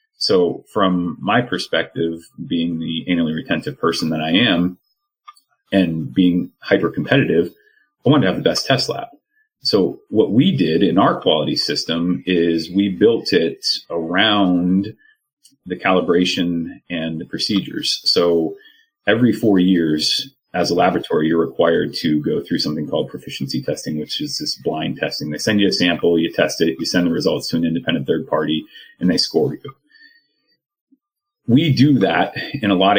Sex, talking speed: male, 160 wpm